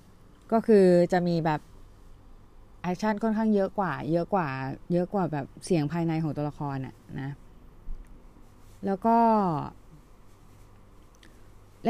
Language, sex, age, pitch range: Thai, female, 20-39, 140-190 Hz